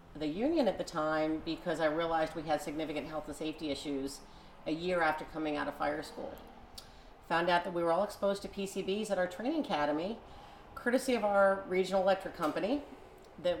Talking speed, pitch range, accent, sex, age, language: 190 wpm, 150-180 Hz, American, female, 40-59, English